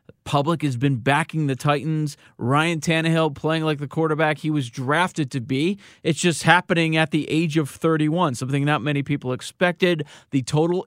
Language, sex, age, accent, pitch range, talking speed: English, male, 40-59, American, 135-165 Hz, 175 wpm